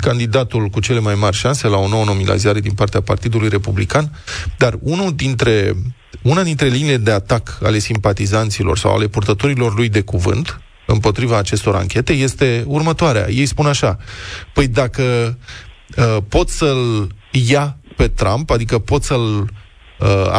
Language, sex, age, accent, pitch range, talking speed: Romanian, male, 20-39, native, 105-150 Hz, 145 wpm